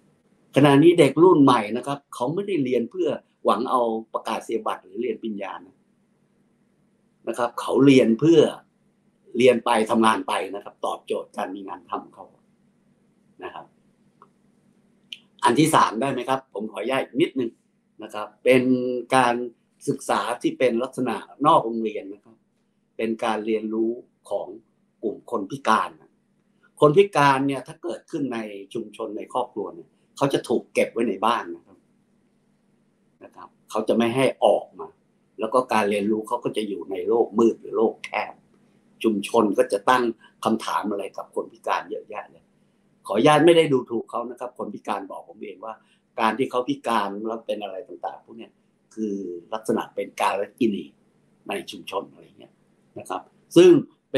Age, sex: 60-79, male